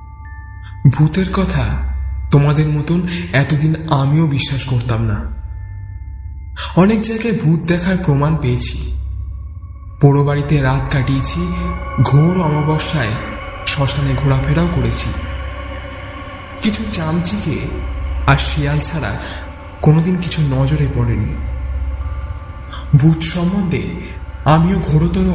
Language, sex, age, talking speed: Bengali, male, 20-39, 90 wpm